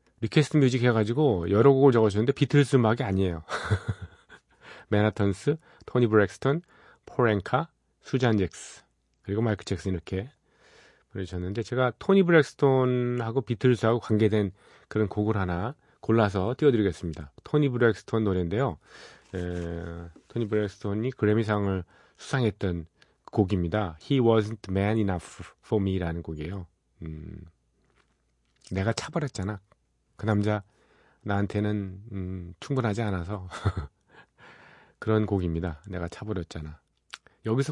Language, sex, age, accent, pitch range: Korean, male, 40-59, native, 95-120 Hz